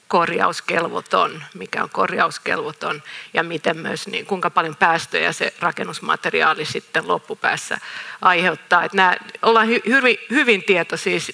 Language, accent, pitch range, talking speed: Finnish, native, 175-210 Hz, 115 wpm